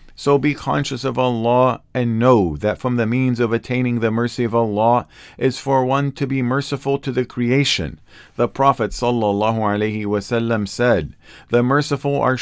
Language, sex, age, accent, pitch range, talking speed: English, male, 50-69, American, 115-130 Hz, 160 wpm